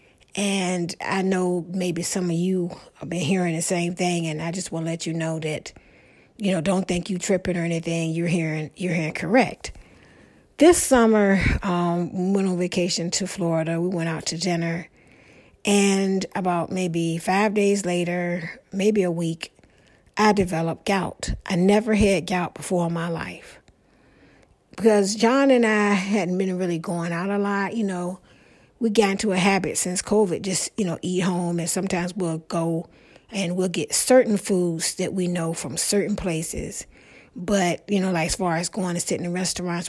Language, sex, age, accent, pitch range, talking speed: English, female, 60-79, American, 170-200 Hz, 180 wpm